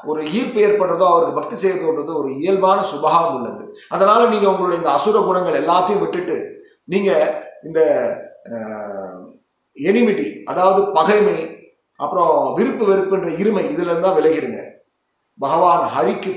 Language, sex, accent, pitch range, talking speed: Tamil, male, native, 185-245 Hz, 115 wpm